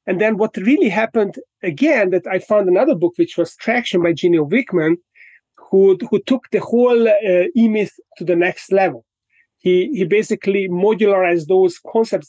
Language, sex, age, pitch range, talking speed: English, male, 30-49, 175-220 Hz, 165 wpm